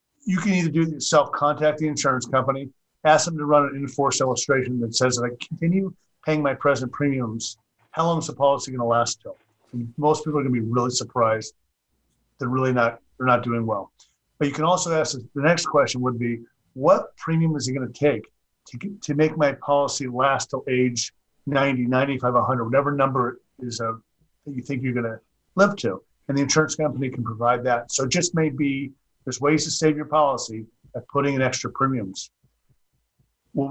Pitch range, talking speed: 120-150 Hz, 210 wpm